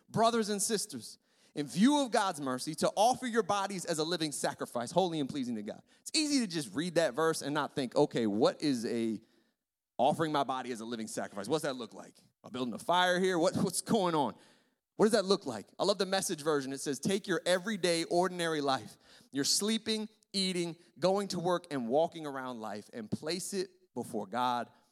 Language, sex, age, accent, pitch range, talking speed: English, male, 30-49, American, 150-210 Hz, 205 wpm